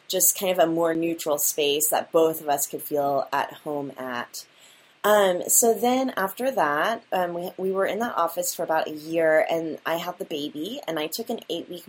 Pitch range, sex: 155-210 Hz, female